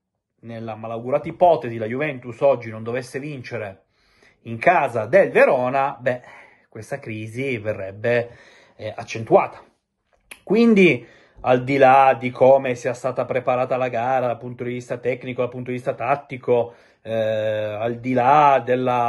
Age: 30-49